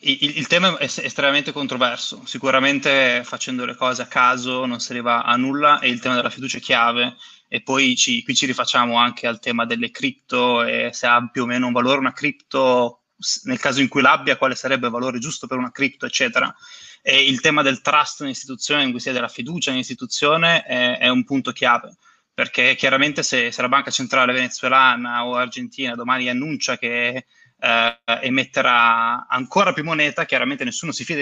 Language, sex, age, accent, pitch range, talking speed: Italian, male, 20-39, native, 125-150 Hz, 185 wpm